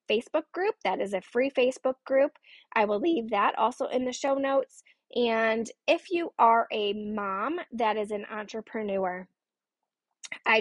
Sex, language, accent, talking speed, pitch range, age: female, English, American, 160 wpm, 220-285 Hz, 10-29